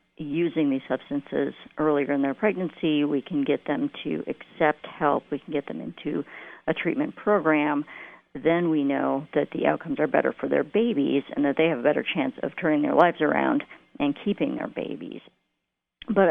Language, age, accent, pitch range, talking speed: English, 50-69, American, 145-195 Hz, 185 wpm